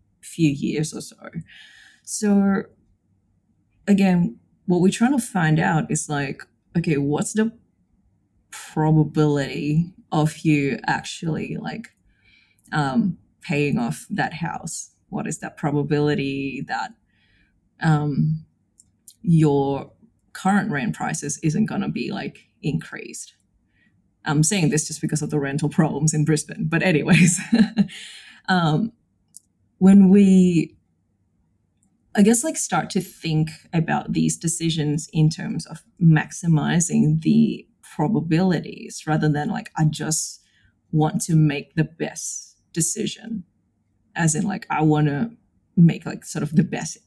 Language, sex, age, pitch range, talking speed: English, female, 20-39, 150-195 Hz, 125 wpm